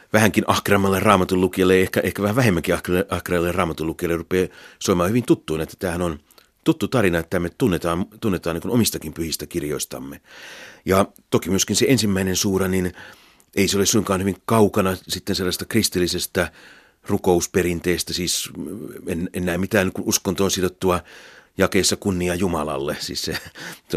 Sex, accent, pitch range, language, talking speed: male, native, 85-100 Hz, Finnish, 140 wpm